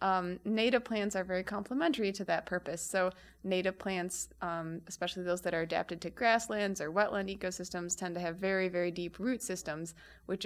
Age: 20-39